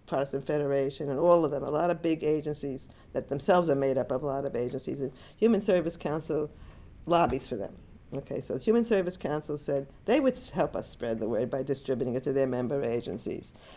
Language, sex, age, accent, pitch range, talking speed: English, female, 50-69, American, 140-185 Hz, 210 wpm